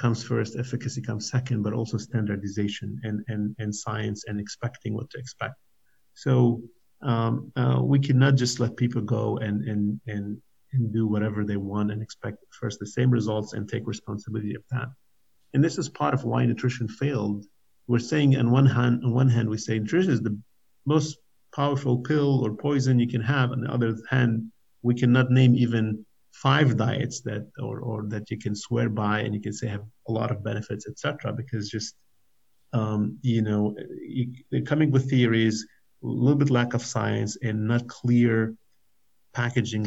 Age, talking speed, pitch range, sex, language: 50-69, 185 wpm, 105-125 Hz, male, English